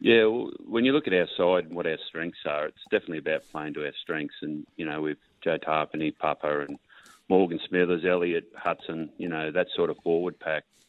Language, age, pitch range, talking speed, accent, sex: English, 30-49, 80-85 Hz, 215 wpm, Australian, male